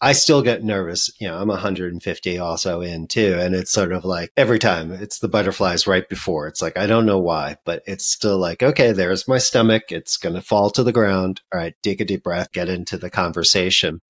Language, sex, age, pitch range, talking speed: English, male, 40-59, 95-125 Hz, 230 wpm